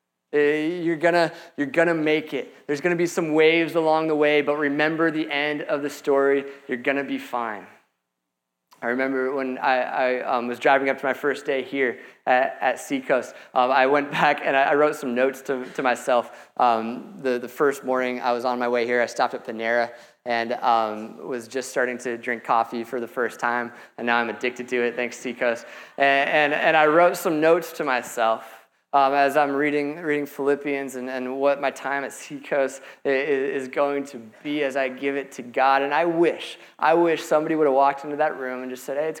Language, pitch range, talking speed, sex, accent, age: English, 125-145 Hz, 215 wpm, male, American, 20-39